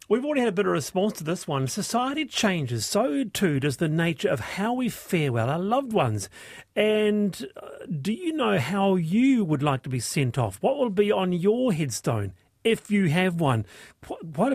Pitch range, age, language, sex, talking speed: 135-190 Hz, 40-59, English, male, 195 wpm